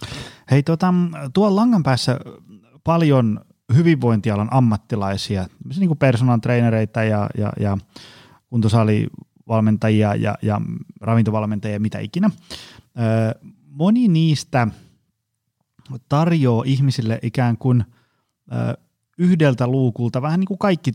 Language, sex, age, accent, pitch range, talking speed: Finnish, male, 30-49, native, 110-140 Hz, 90 wpm